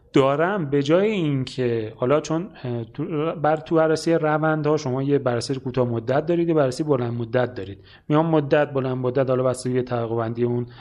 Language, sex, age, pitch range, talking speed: Persian, male, 30-49, 125-165 Hz, 185 wpm